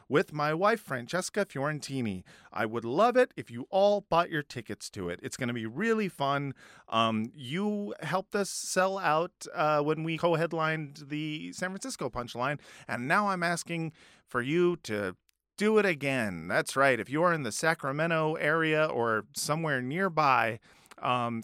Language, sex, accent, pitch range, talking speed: English, male, American, 135-190 Hz, 165 wpm